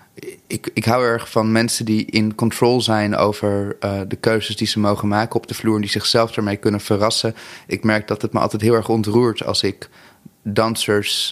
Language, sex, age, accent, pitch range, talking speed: Dutch, male, 30-49, Dutch, 105-115 Hz, 205 wpm